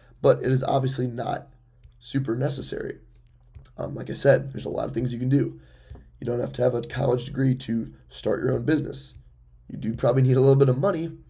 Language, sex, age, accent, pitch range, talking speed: English, male, 10-29, American, 110-135 Hz, 220 wpm